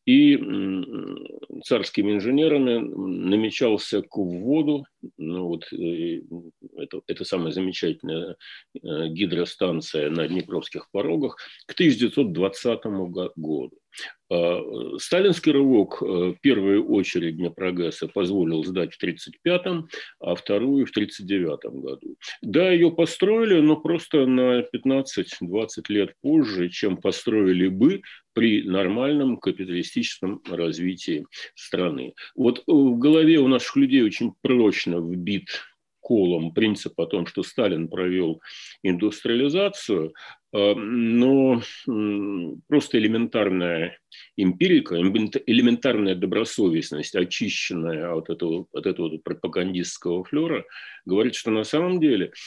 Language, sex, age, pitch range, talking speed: Russian, male, 50-69, 90-150 Hz, 100 wpm